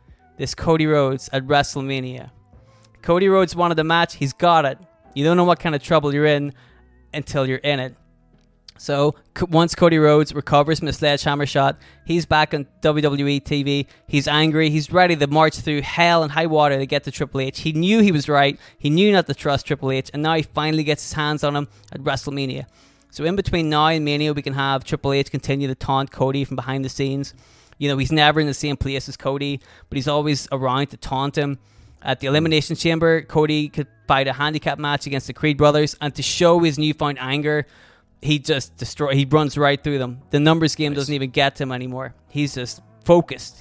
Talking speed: 215 wpm